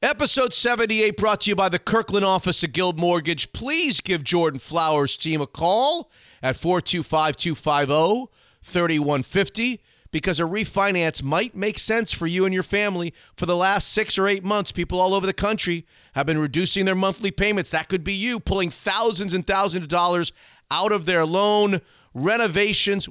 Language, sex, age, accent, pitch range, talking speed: English, male, 40-59, American, 160-205 Hz, 170 wpm